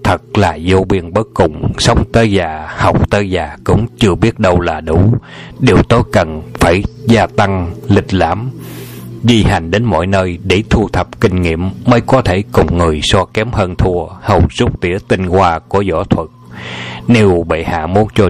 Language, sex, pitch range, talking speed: Vietnamese, male, 90-110 Hz, 190 wpm